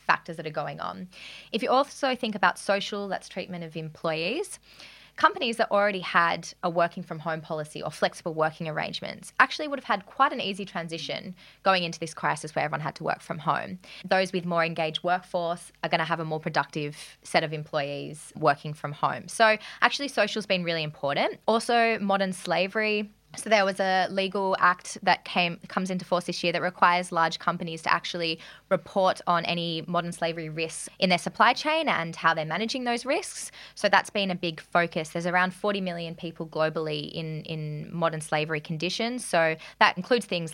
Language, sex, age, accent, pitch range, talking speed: English, female, 20-39, Australian, 165-210 Hz, 195 wpm